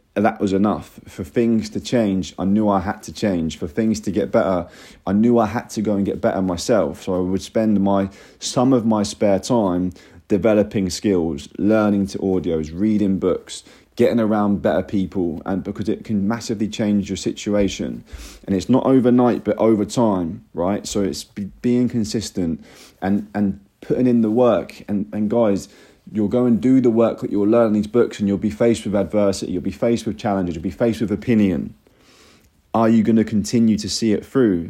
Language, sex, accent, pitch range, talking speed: English, male, British, 100-115 Hz, 200 wpm